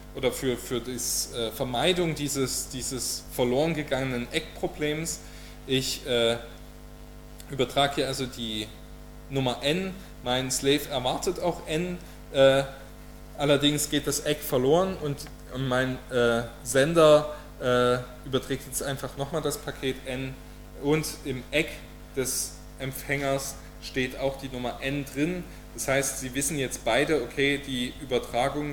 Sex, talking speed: male, 130 wpm